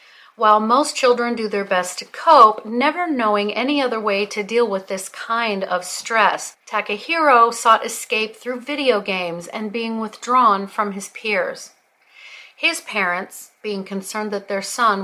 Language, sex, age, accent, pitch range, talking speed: English, female, 40-59, American, 195-250 Hz, 155 wpm